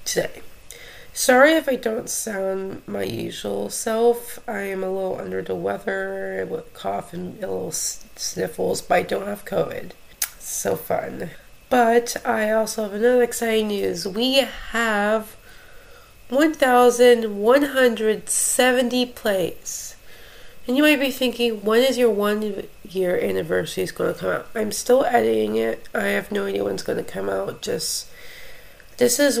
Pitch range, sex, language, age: 185-250 Hz, female, English, 20-39